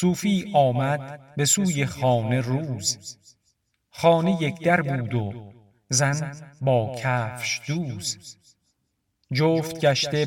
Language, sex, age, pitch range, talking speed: Persian, male, 50-69, 125-150 Hz, 100 wpm